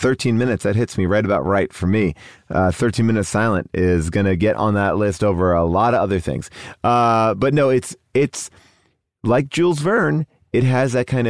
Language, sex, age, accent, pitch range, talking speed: English, male, 30-49, American, 95-120 Hz, 195 wpm